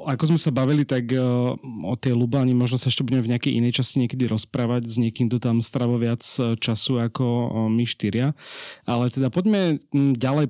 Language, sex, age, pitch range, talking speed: Slovak, male, 30-49, 115-135 Hz, 185 wpm